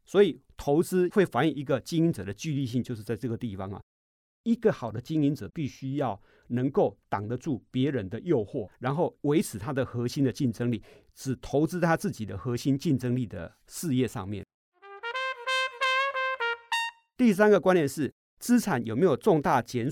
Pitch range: 115-180 Hz